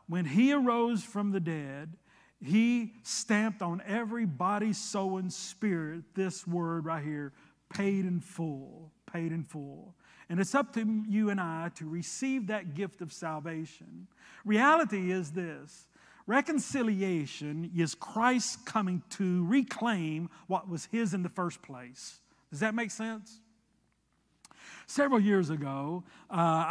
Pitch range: 160-210 Hz